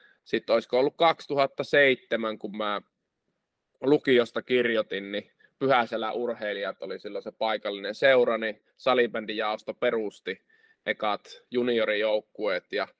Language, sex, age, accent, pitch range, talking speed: Finnish, male, 20-39, native, 110-130 Hz, 100 wpm